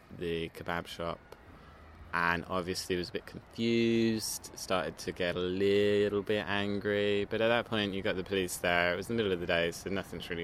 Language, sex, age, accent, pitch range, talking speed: English, male, 20-39, British, 85-100 Hz, 200 wpm